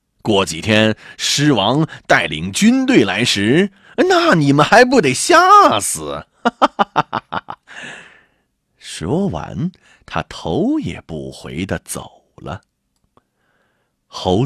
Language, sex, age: Chinese, male, 30-49